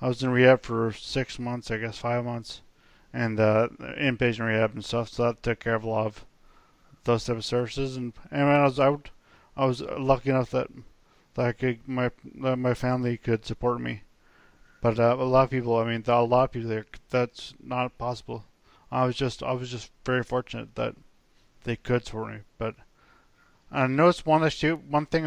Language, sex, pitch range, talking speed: English, male, 115-130 Hz, 205 wpm